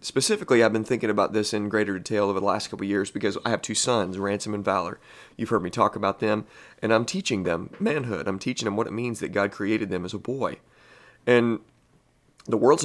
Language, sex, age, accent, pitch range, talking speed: English, male, 30-49, American, 100-115 Hz, 235 wpm